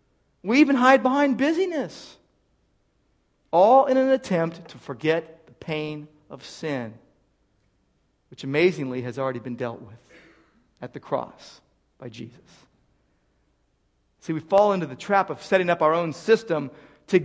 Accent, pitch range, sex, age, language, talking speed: American, 145-220 Hz, male, 50-69, English, 140 wpm